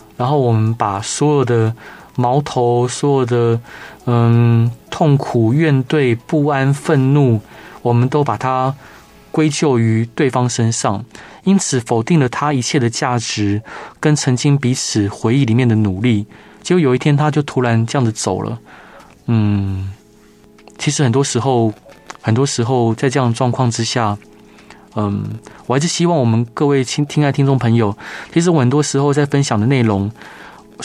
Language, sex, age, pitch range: Chinese, male, 20-39, 110-140 Hz